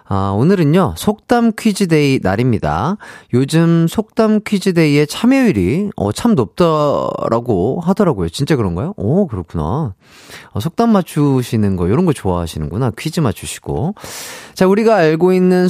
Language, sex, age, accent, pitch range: Korean, male, 30-49, native, 115-190 Hz